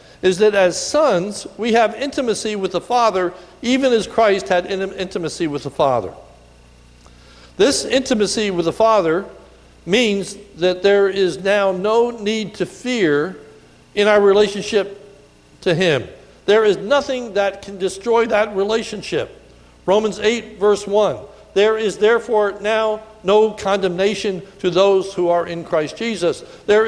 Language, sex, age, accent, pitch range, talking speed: English, male, 60-79, American, 175-220 Hz, 145 wpm